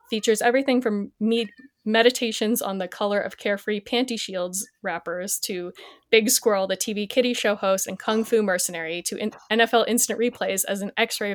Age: 20-39